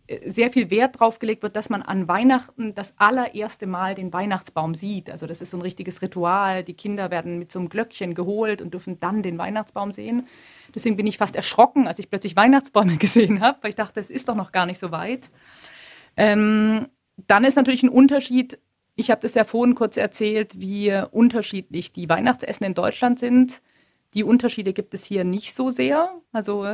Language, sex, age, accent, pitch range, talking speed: Swedish, female, 30-49, German, 195-245 Hz, 195 wpm